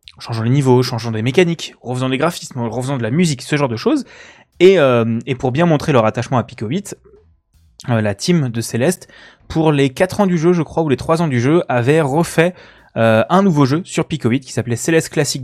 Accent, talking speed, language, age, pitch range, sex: French, 235 wpm, French, 20-39, 120-165 Hz, male